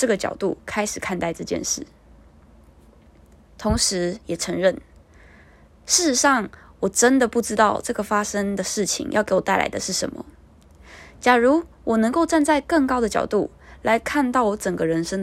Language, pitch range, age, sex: Chinese, 185-255 Hz, 20-39, female